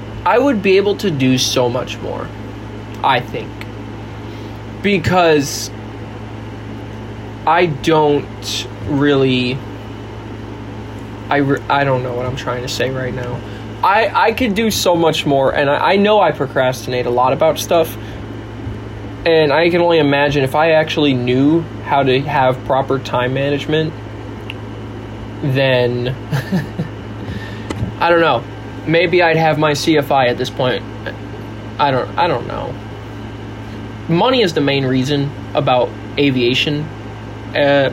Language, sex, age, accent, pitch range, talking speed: English, male, 20-39, American, 110-145 Hz, 130 wpm